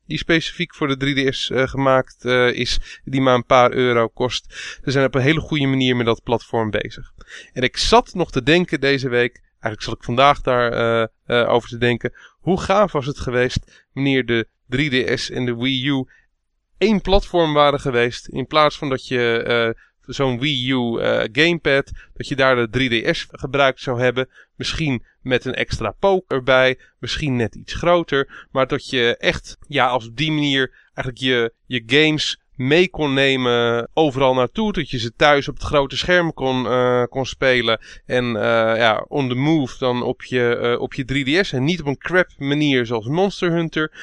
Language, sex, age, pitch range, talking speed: Dutch, male, 20-39, 125-150 Hz, 190 wpm